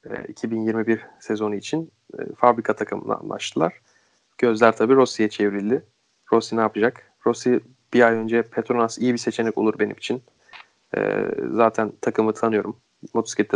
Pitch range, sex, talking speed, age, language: 110-120 Hz, male, 125 wpm, 30-49, Turkish